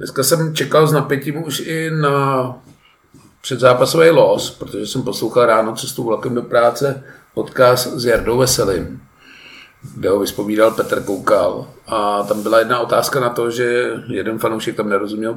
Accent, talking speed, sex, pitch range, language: native, 150 wpm, male, 110-130 Hz, Czech